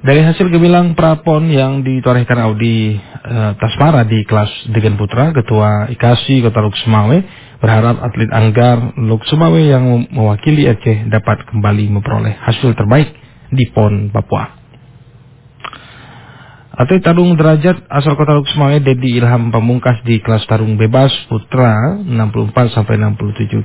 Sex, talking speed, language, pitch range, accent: male, 115 wpm, English, 110-135 Hz, Indonesian